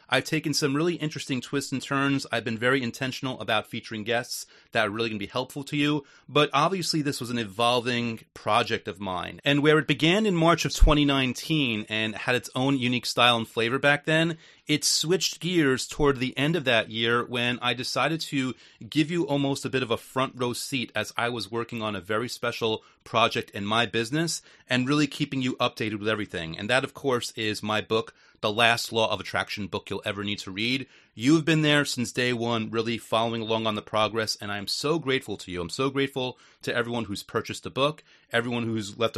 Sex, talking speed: male, 215 wpm